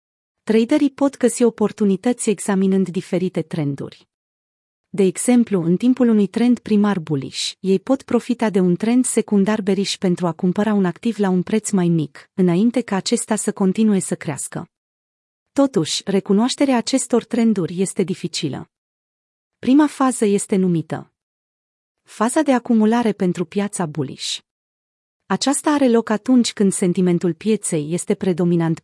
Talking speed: 135 wpm